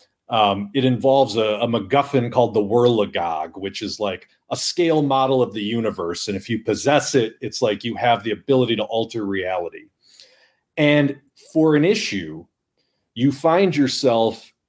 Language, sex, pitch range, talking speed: English, male, 115-150 Hz, 160 wpm